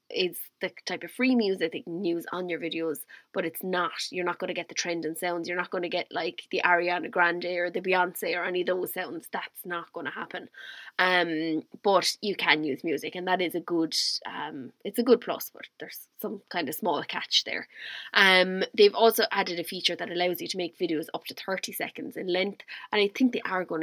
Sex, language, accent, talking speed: female, English, Irish, 230 wpm